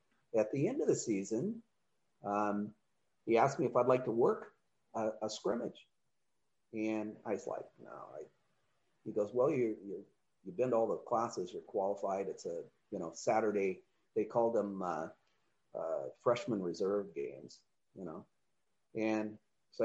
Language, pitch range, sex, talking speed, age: English, 100-120 Hz, male, 160 wpm, 40-59